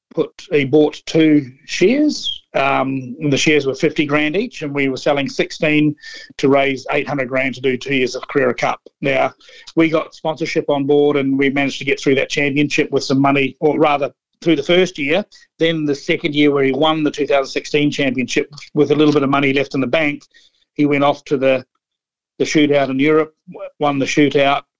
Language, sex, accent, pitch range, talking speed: English, male, Australian, 140-165 Hz, 205 wpm